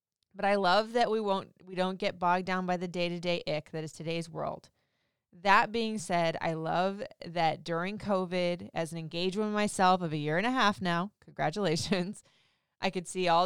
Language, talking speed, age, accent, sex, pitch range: English, 195 wpm, 20-39, American, female, 165-200 Hz